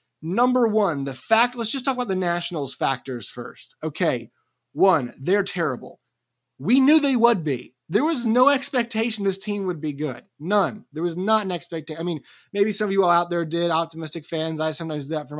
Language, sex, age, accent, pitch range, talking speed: English, male, 30-49, American, 150-190 Hz, 205 wpm